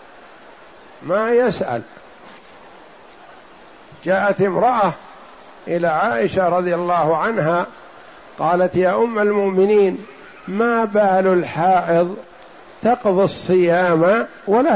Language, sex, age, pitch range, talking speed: Arabic, male, 60-79, 165-210 Hz, 75 wpm